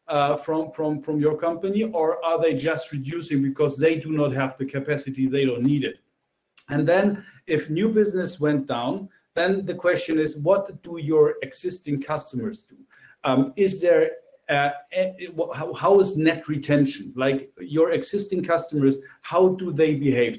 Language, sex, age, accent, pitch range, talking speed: English, male, 50-69, German, 145-190 Hz, 160 wpm